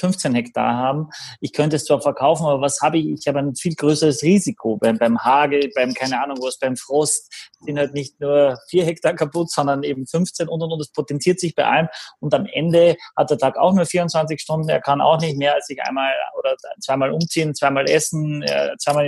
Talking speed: 220 wpm